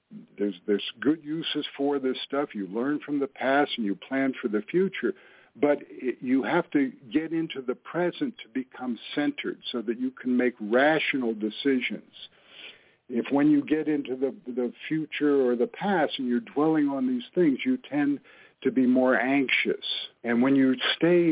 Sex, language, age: male, English, 60-79